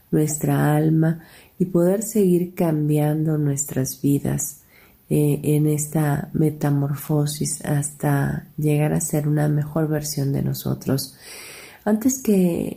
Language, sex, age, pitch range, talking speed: Spanish, female, 40-59, 145-165 Hz, 110 wpm